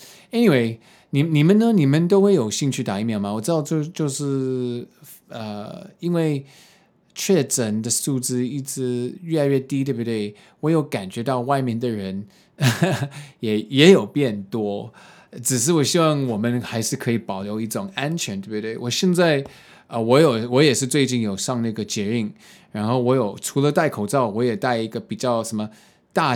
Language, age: Chinese, 20-39